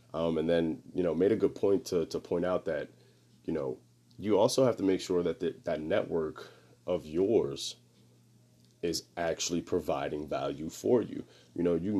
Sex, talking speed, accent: male, 180 wpm, American